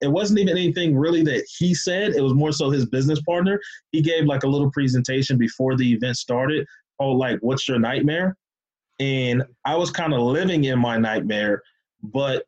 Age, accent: 20-39, American